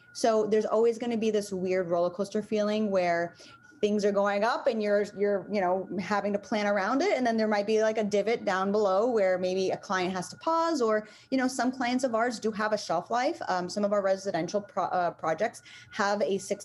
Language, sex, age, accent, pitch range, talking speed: English, female, 20-39, American, 185-220 Hz, 235 wpm